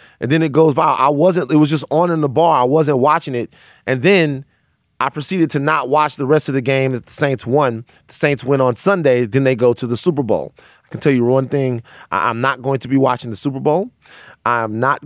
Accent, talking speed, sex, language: American, 250 wpm, male, English